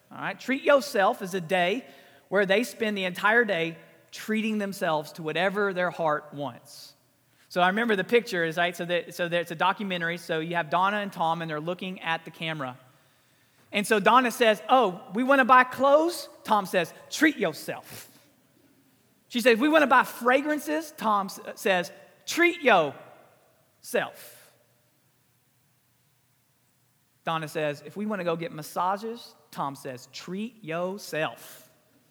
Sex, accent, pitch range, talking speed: male, American, 145-225 Hz, 155 wpm